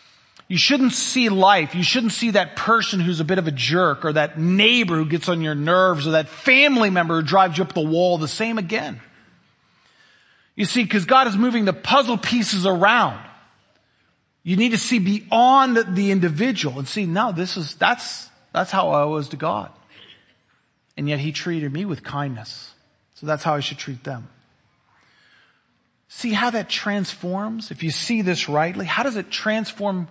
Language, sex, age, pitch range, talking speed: English, male, 40-59, 150-210 Hz, 185 wpm